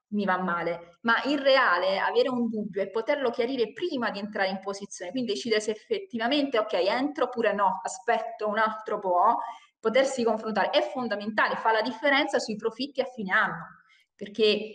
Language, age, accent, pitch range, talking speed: Italian, 20-39, native, 195-245 Hz, 170 wpm